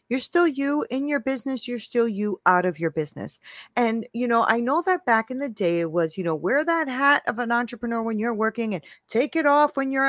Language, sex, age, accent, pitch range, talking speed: English, female, 40-59, American, 185-260 Hz, 250 wpm